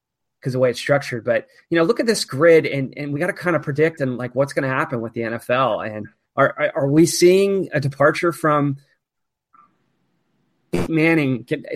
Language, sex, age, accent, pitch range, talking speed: English, male, 30-49, American, 125-155 Hz, 200 wpm